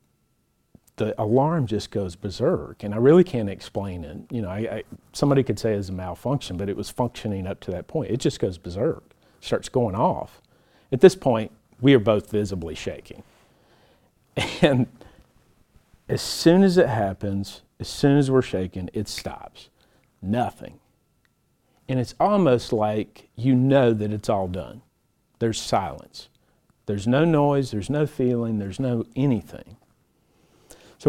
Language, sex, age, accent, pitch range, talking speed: English, male, 50-69, American, 100-130 Hz, 155 wpm